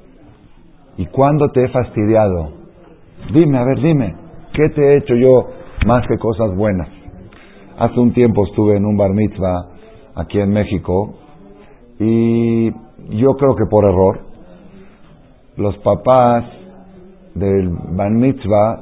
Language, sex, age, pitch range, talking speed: Spanish, male, 50-69, 100-140 Hz, 130 wpm